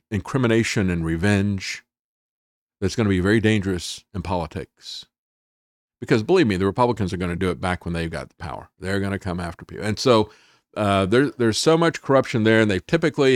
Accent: American